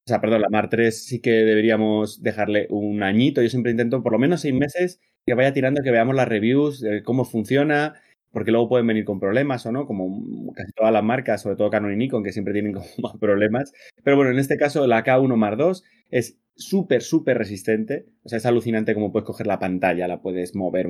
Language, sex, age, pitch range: Spanish, male, 20-39, 105-130 Hz